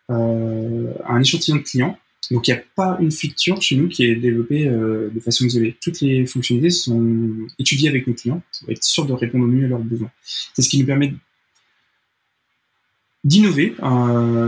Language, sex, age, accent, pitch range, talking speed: French, male, 20-39, French, 120-145 Hz, 180 wpm